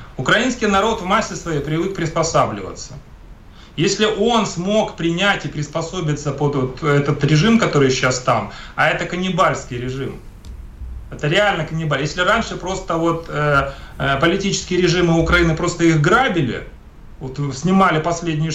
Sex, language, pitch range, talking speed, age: male, Russian, 145-185 Hz, 135 wpm, 30-49